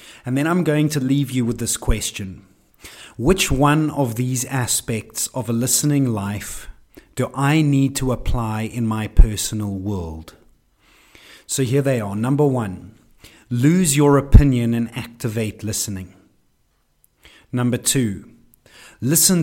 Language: English